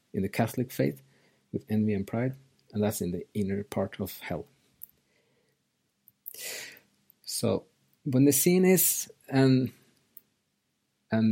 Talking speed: 120 wpm